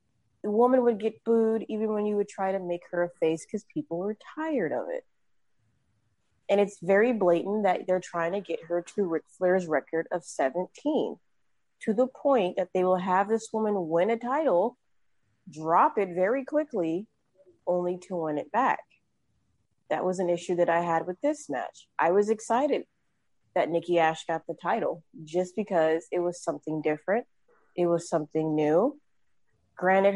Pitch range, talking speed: 170-220 Hz, 175 wpm